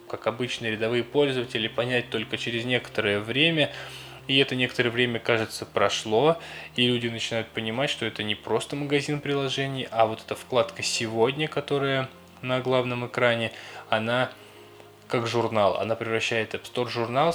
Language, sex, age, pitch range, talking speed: Russian, male, 20-39, 110-130 Hz, 145 wpm